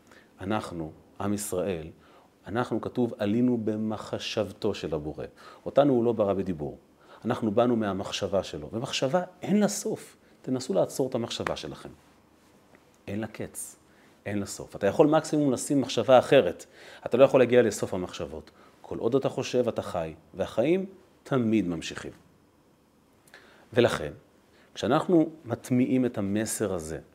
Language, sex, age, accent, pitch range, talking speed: Hebrew, male, 30-49, native, 100-140 Hz, 135 wpm